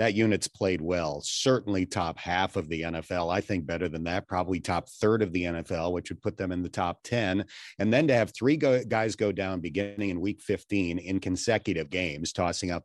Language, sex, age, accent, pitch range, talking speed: English, male, 40-59, American, 90-115 Hz, 215 wpm